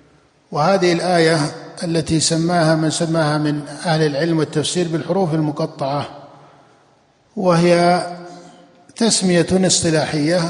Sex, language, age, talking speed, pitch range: male, Arabic, 50-69, 85 wpm, 150-180 Hz